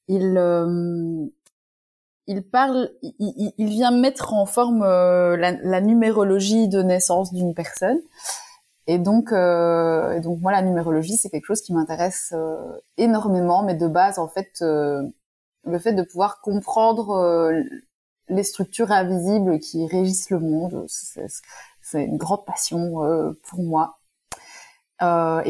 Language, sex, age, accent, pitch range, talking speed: French, female, 20-39, French, 175-215 Hz, 150 wpm